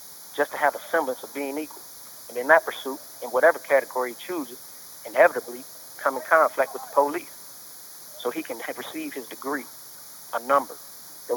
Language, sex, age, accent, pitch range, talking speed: English, male, 30-49, American, 135-165 Hz, 175 wpm